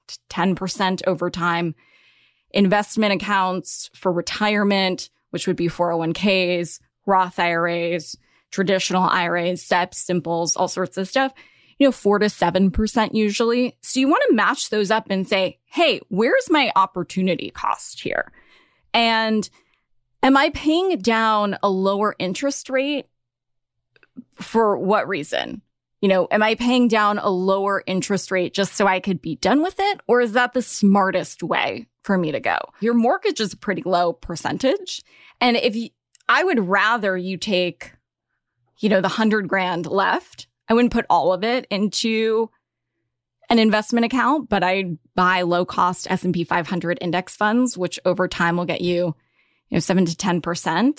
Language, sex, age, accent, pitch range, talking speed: English, female, 20-39, American, 175-220 Hz, 160 wpm